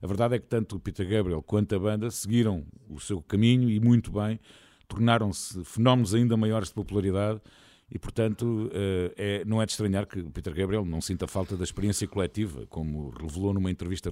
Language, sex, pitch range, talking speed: Portuguese, male, 95-120 Hz, 185 wpm